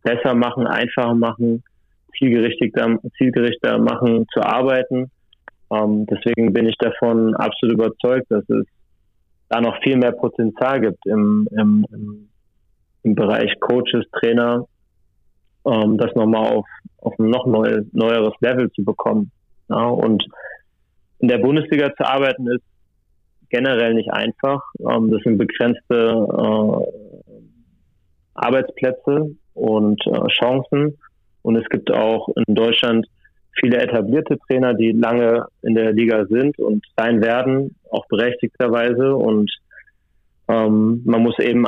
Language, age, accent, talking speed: German, 30-49, German, 125 wpm